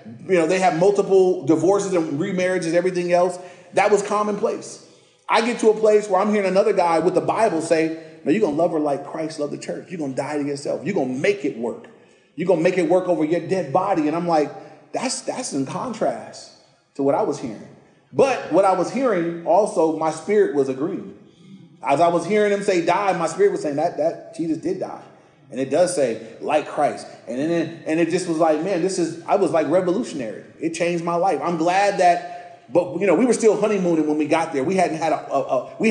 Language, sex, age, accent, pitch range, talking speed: English, male, 30-49, American, 160-190 Hz, 240 wpm